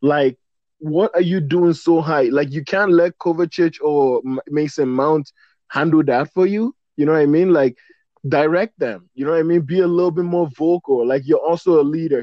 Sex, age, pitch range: male, 20-39, 135-170 Hz